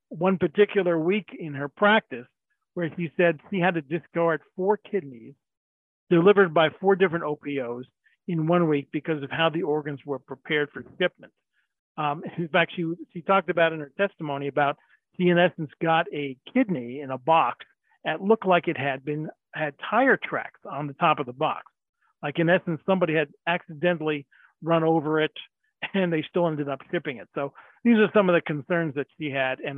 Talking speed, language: 190 wpm, English